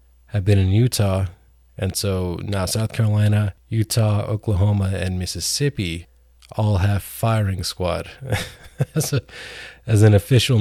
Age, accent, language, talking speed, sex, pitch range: 20-39, American, English, 130 wpm, male, 85-110 Hz